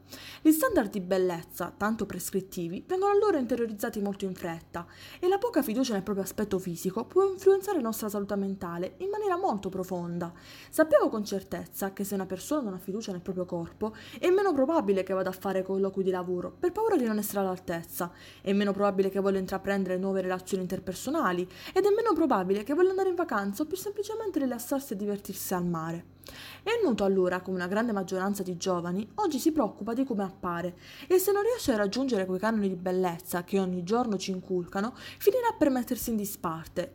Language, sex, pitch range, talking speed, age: Italian, female, 185-305 Hz, 195 wpm, 20-39